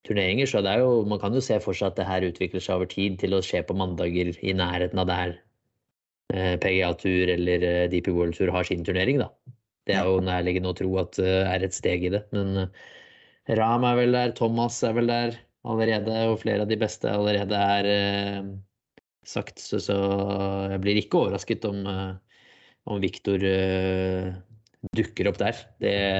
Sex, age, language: male, 20-39, English